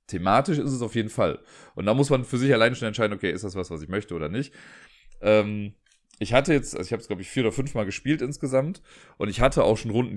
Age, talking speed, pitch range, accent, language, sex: 30-49, 270 wpm, 95-125 Hz, German, German, male